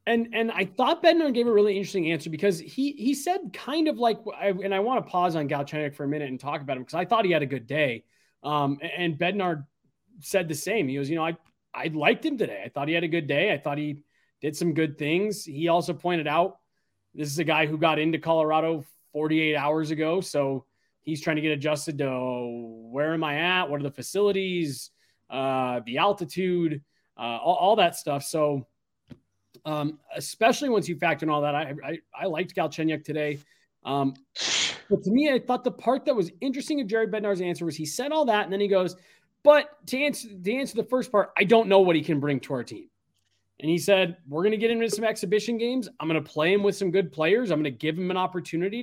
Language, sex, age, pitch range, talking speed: English, male, 20-39, 145-200 Hz, 235 wpm